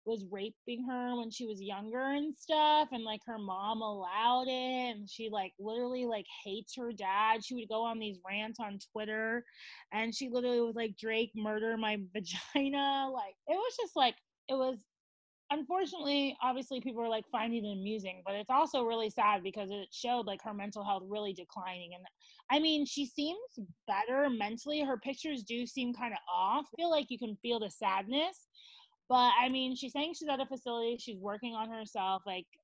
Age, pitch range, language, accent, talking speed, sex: 20-39, 205-265 Hz, English, American, 195 wpm, female